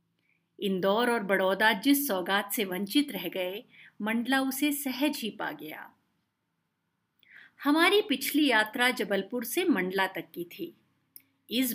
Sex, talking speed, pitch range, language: female, 130 wpm, 200-295 Hz, Hindi